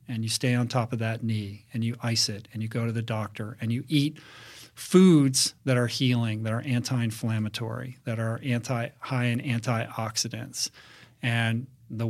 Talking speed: 180 wpm